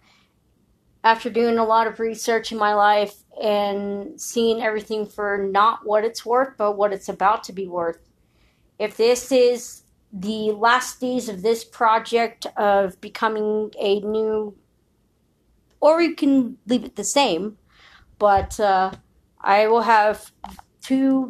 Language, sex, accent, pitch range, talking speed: English, female, American, 195-225 Hz, 140 wpm